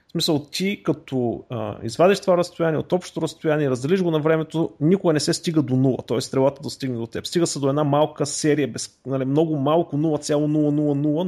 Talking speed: 195 wpm